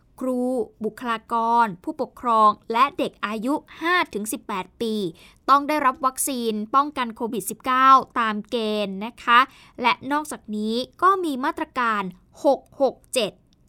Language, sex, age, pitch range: Thai, female, 20-39, 220-295 Hz